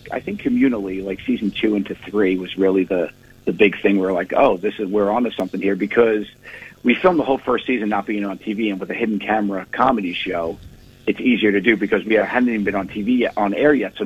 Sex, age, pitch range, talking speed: male, 50-69, 95-115 Hz, 250 wpm